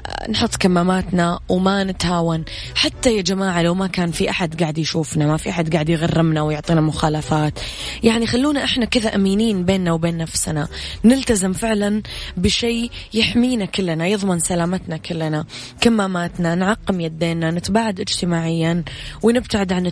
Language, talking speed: English, 135 wpm